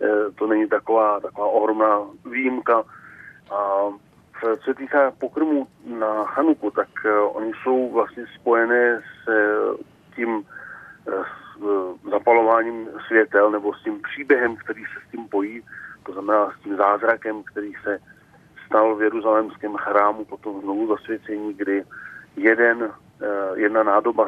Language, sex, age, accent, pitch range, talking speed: Czech, male, 40-59, native, 100-115 Hz, 125 wpm